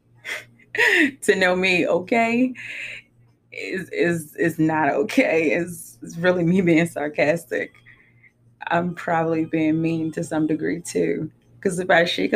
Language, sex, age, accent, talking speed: English, female, 20-39, American, 130 wpm